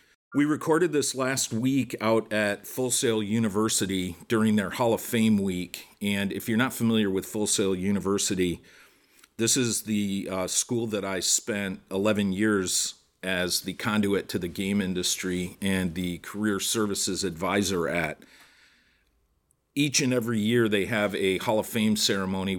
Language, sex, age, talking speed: English, male, 50-69, 155 wpm